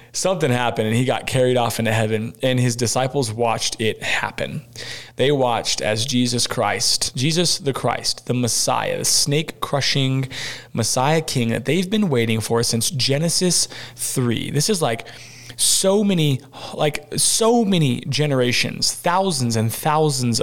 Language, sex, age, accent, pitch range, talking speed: English, male, 20-39, American, 120-140 Hz, 145 wpm